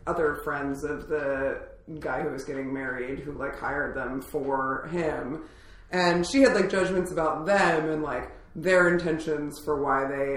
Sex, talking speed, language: female, 170 wpm, English